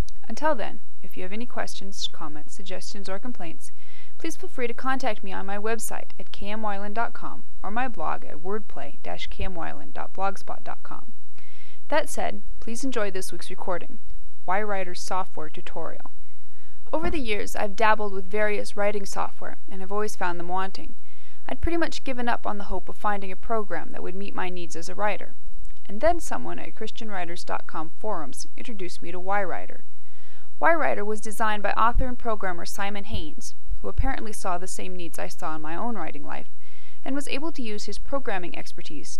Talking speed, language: 175 wpm, English